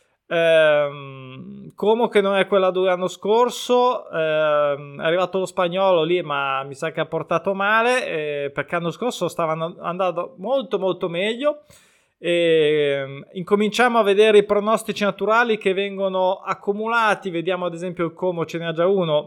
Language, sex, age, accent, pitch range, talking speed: Italian, male, 20-39, native, 165-210 Hz, 150 wpm